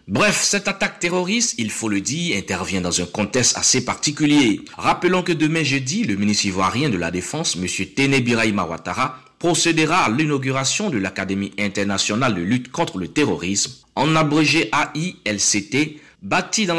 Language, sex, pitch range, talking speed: French, male, 100-150 Hz, 155 wpm